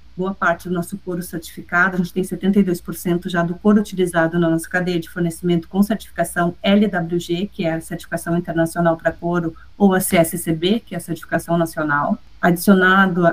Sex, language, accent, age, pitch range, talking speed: female, Portuguese, Brazilian, 30-49, 170-190 Hz, 170 wpm